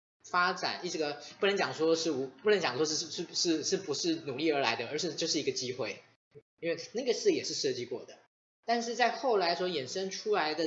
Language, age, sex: Chinese, 20-39, male